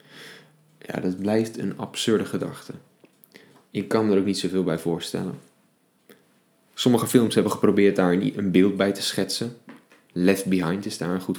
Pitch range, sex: 95-115 Hz, male